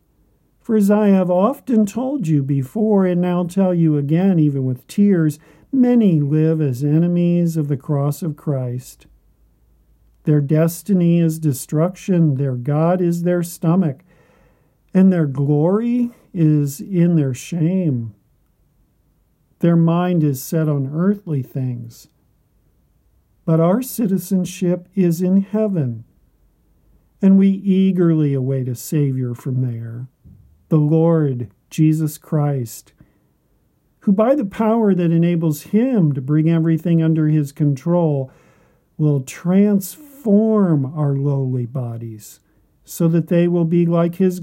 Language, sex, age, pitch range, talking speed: English, male, 50-69, 135-180 Hz, 125 wpm